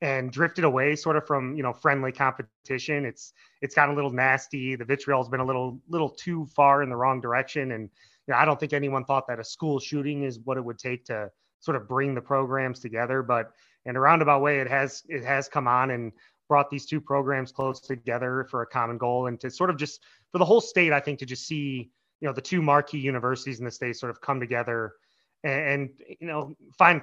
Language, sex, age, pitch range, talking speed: English, male, 30-49, 125-150 Hz, 240 wpm